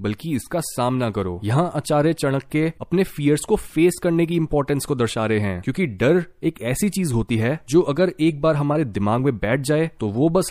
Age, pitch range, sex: 20-39, 120-170 Hz, male